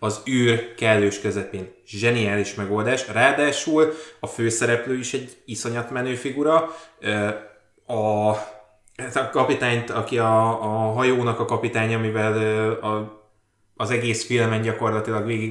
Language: Hungarian